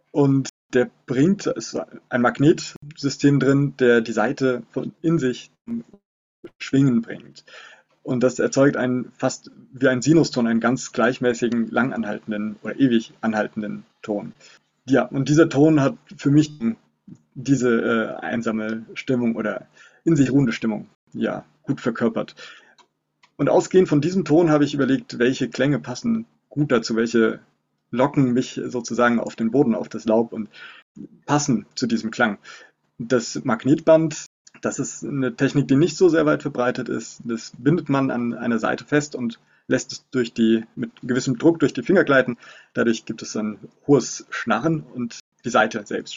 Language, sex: German, male